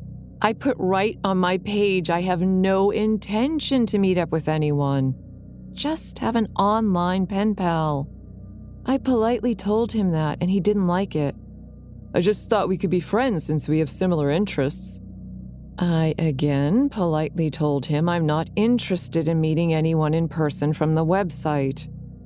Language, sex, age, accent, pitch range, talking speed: English, female, 30-49, American, 145-190 Hz, 160 wpm